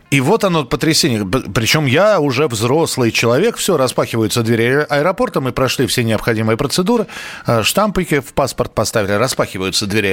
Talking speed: 140 wpm